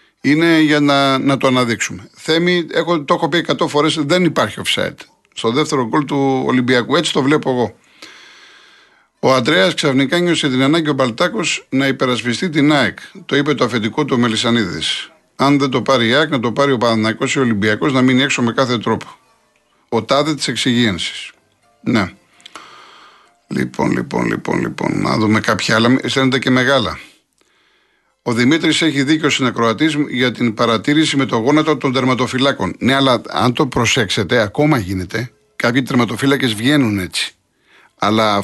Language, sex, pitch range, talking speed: Greek, male, 120-155 Hz, 165 wpm